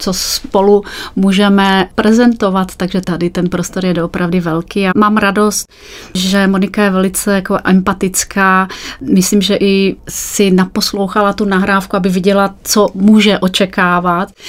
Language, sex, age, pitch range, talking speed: Czech, female, 30-49, 185-205 Hz, 135 wpm